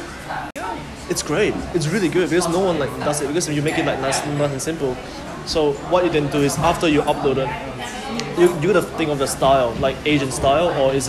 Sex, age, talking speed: male, 20-39, 225 wpm